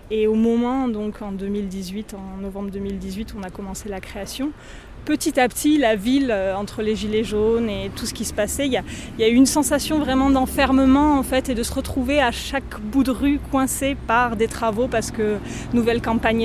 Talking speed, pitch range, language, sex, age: 205 wpm, 210-245 Hz, French, female, 20-39